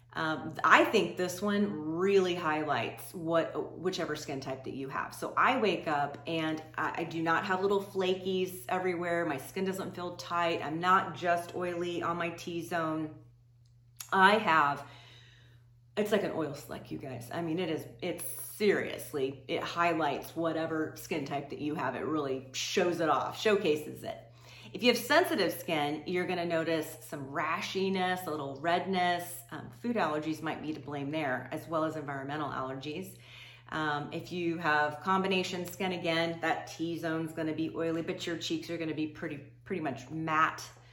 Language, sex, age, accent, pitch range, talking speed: English, female, 30-49, American, 145-175 Hz, 170 wpm